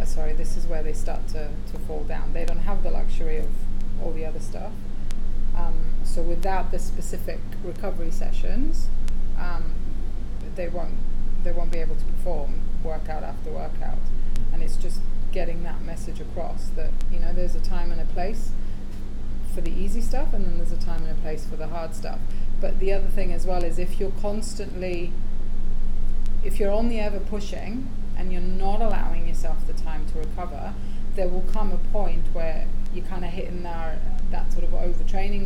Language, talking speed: English, 185 wpm